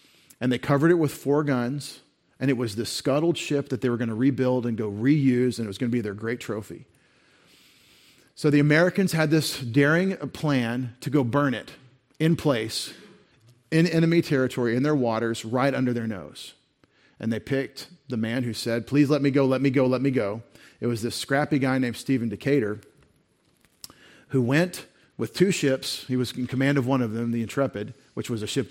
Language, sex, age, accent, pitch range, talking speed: English, male, 40-59, American, 120-145 Hz, 205 wpm